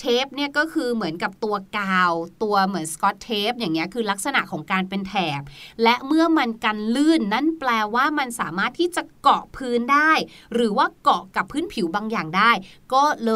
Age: 30-49